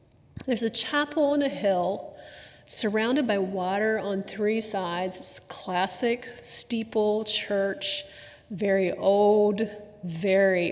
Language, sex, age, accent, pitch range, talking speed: English, female, 30-49, American, 180-225 Hz, 110 wpm